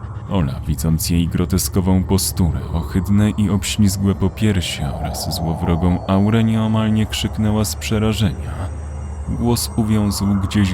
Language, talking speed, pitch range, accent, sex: Polish, 105 wpm, 85-105 Hz, native, male